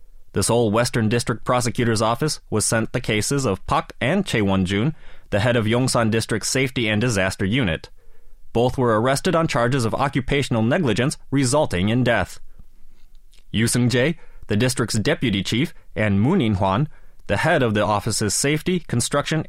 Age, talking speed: 20-39, 160 wpm